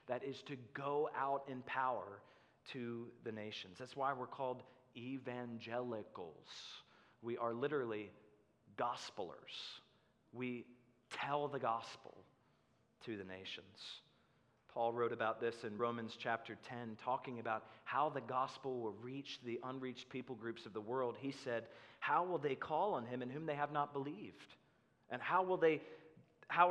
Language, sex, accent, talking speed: English, male, American, 145 wpm